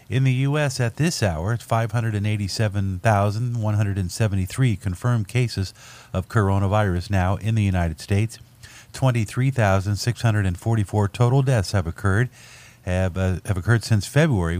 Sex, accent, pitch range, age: male, American, 95-115 Hz, 50-69